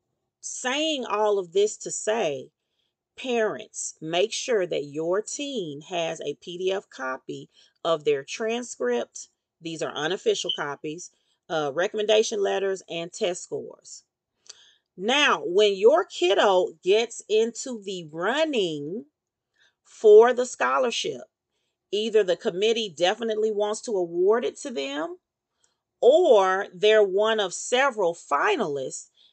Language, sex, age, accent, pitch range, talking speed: English, female, 40-59, American, 170-245 Hz, 115 wpm